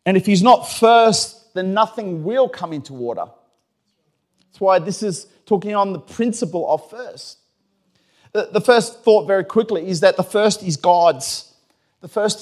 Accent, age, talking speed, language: Australian, 30-49, 165 wpm, English